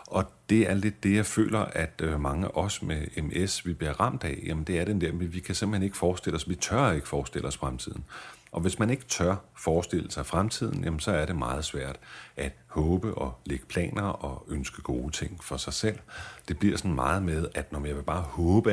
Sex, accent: male, native